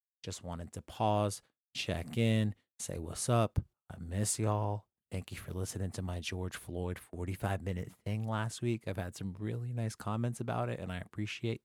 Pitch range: 95-120 Hz